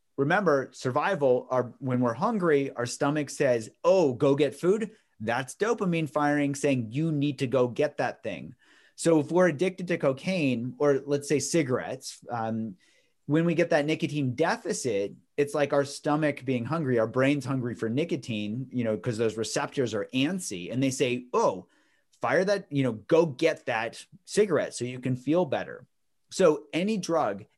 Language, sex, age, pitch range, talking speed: English, male, 30-49, 125-155 Hz, 170 wpm